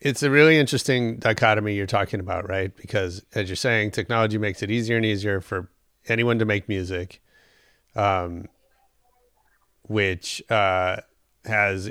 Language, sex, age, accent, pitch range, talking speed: English, male, 30-49, American, 95-115 Hz, 140 wpm